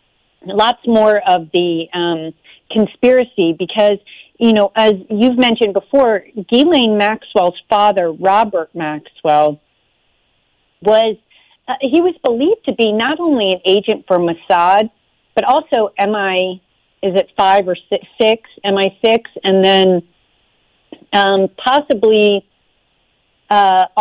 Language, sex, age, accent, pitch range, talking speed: English, female, 40-59, American, 190-230 Hz, 120 wpm